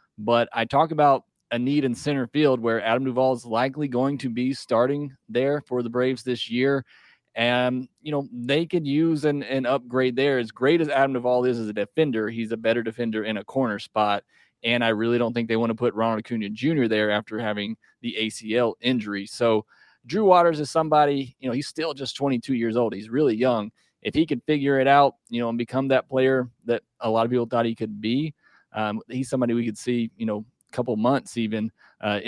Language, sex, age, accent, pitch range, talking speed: English, male, 30-49, American, 115-135 Hz, 220 wpm